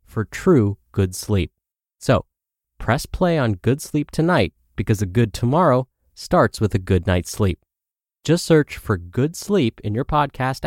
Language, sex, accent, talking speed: English, male, American, 165 wpm